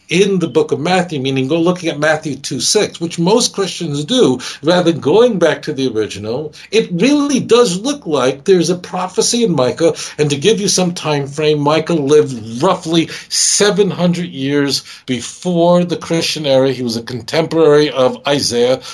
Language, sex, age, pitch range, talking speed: English, male, 50-69, 135-195 Hz, 175 wpm